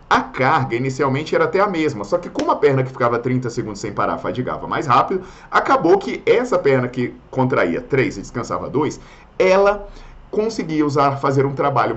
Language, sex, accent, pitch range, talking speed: Portuguese, male, Brazilian, 120-170 Hz, 180 wpm